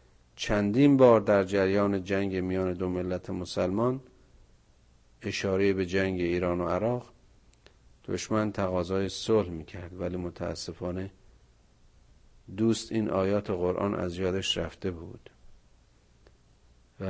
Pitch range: 75-100 Hz